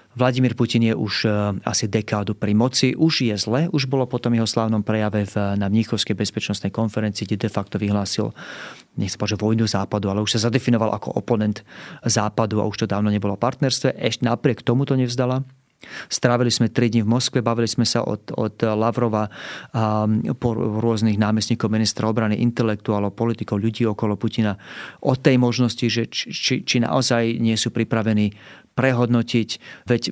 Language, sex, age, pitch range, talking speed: Slovak, male, 30-49, 105-125 Hz, 165 wpm